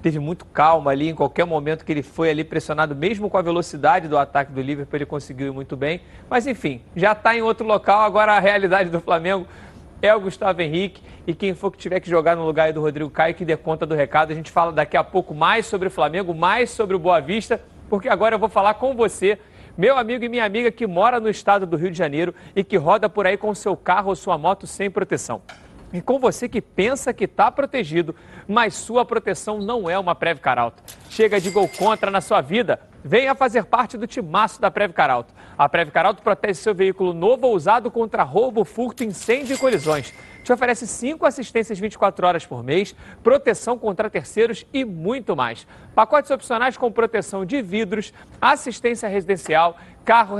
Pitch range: 170-230 Hz